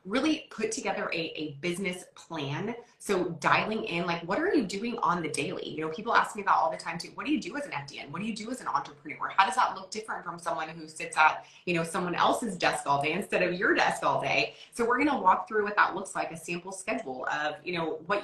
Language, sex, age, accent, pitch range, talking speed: English, female, 20-39, American, 160-210 Hz, 270 wpm